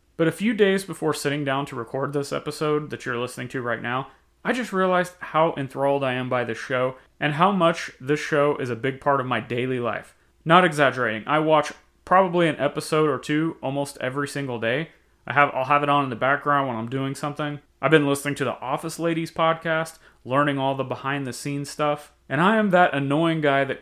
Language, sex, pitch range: English, male, 130-160 Hz